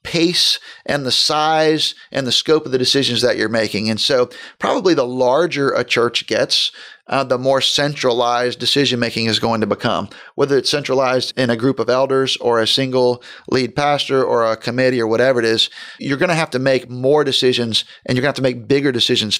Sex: male